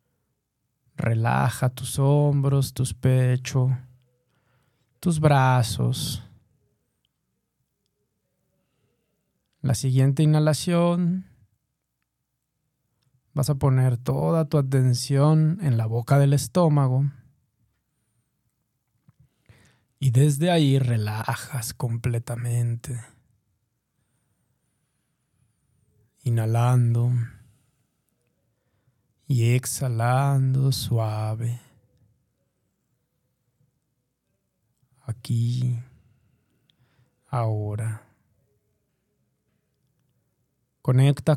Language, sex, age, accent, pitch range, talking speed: Spanish, male, 20-39, Mexican, 120-140 Hz, 50 wpm